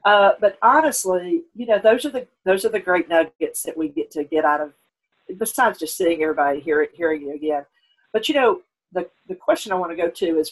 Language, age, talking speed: English, 50-69, 235 wpm